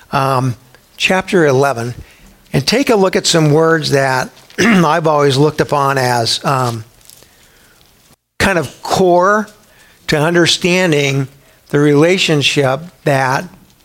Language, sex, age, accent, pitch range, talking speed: English, male, 60-79, American, 135-175 Hz, 110 wpm